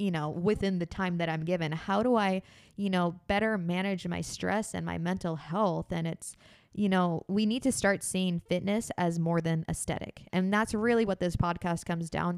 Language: English